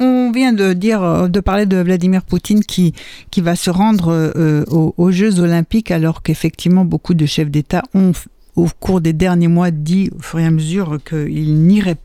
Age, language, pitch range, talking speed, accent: 60-79, French, 165-205 Hz, 195 wpm, French